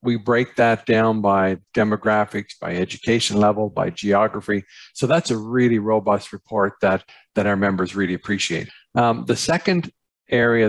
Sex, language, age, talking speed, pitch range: male, English, 50-69, 150 wpm, 100-115 Hz